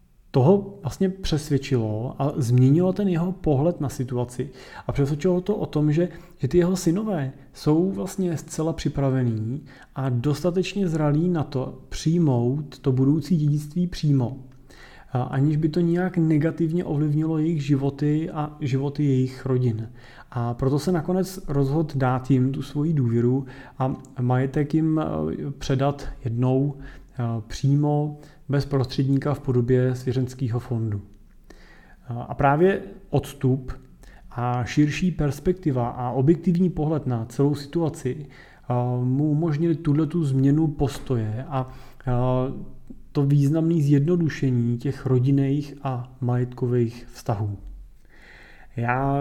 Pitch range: 130-155 Hz